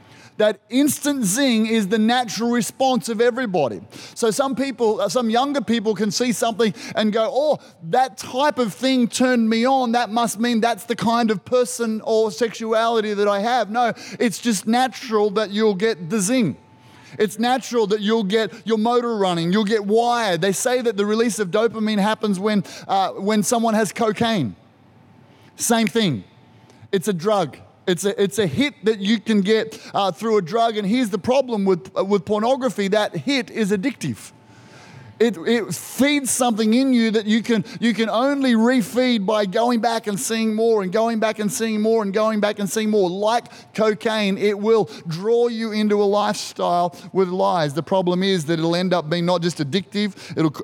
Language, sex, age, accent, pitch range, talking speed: English, male, 30-49, Australian, 195-235 Hz, 185 wpm